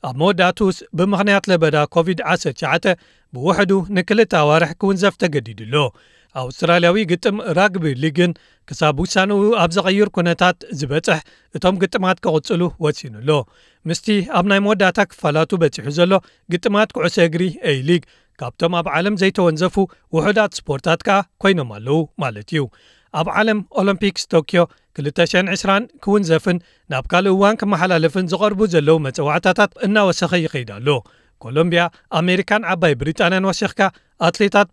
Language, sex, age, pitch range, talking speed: Amharic, male, 40-59, 155-195 Hz, 110 wpm